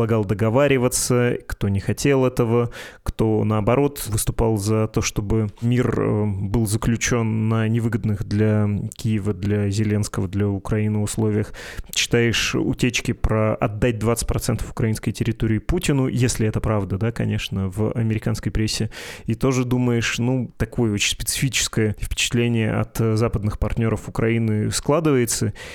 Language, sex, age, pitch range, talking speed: Russian, male, 20-39, 110-125 Hz, 120 wpm